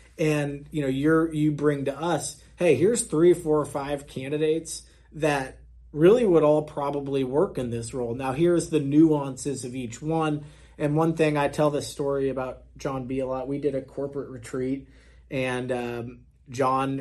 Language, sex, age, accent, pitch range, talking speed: English, male, 30-49, American, 125-155 Hz, 180 wpm